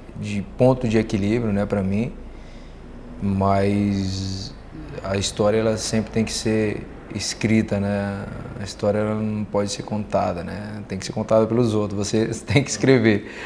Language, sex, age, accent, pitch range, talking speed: Portuguese, male, 20-39, Brazilian, 100-110 Hz, 155 wpm